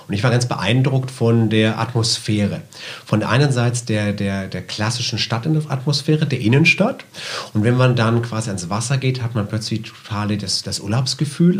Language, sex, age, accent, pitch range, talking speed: German, male, 40-59, German, 115-145 Hz, 185 wpm